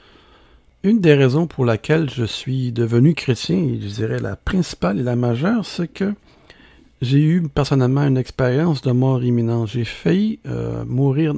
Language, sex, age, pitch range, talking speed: French, male, 60-79, 115-145 Hz, 165 wpm